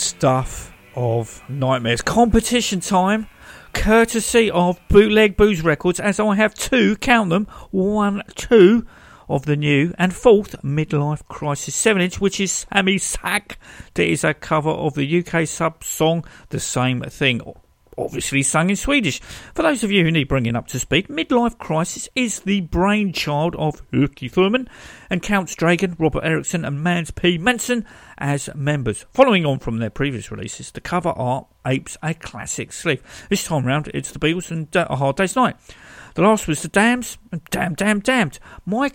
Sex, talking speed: male, 170 wpm